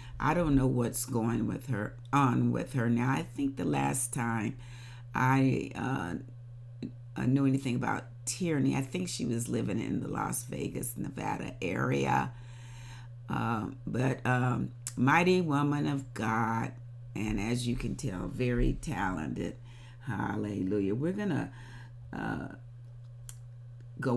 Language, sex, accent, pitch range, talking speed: English, female, American, 120-135 Hz, 130 wpm